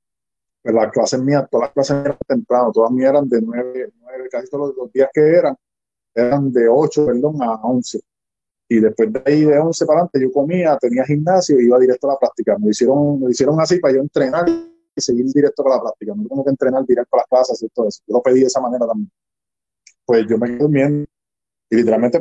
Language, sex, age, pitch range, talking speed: Spanish, male, 20-39, 120-165 Hz, 220 wpm